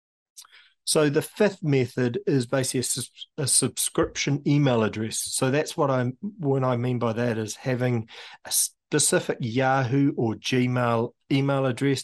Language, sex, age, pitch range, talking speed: English, male, 40-59, 110-130 Hz, 140 wpm